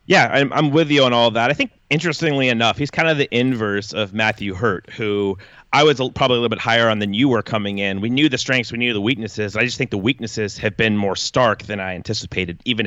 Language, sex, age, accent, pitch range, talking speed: English, male, 30-49, American, 110-145 Hz, 255 wpm